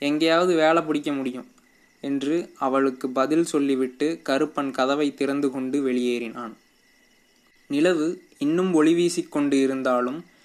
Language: Tamil